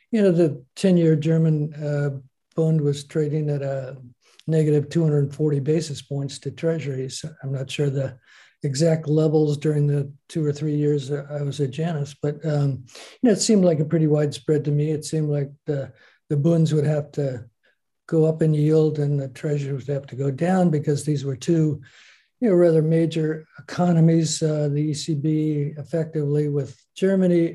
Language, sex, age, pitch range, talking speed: English, male, 50-69, 140-155 Hz, 175 wpm